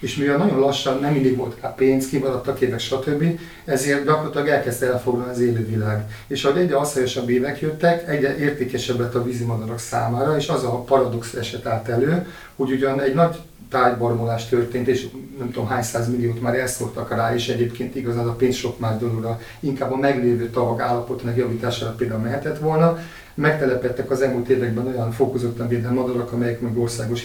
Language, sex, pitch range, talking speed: Hungarian, male, 115-135 Hz, 175 wpm